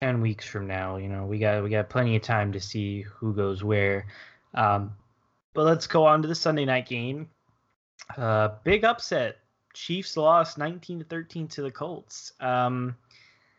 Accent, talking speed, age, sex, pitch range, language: American, 175 wpm, 10-29, male, 110-145 Hz, English